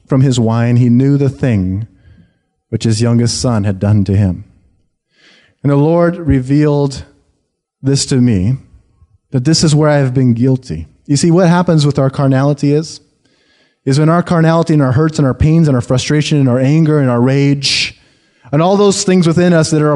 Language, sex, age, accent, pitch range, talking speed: English, male, 30-49, American, 130-185 Hz, 195 wpm